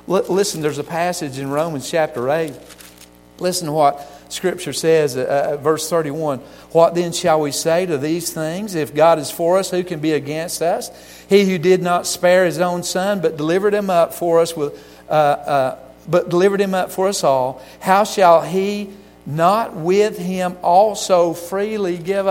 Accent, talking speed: American, 185 wpm